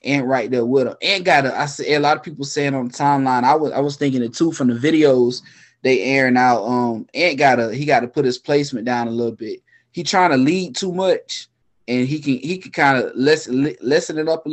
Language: English